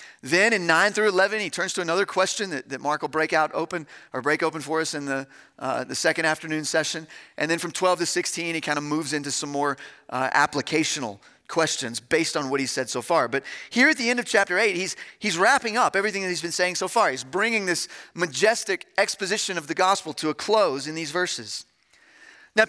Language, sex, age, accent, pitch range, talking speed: English, male, 40-59, American, 150-190 Hz, 225 wpm